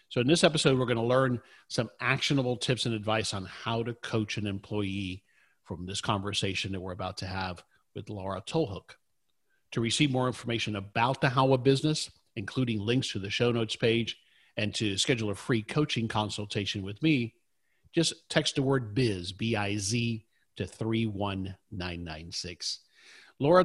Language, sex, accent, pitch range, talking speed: English, male, American, 105-130 Hz, 160 wpm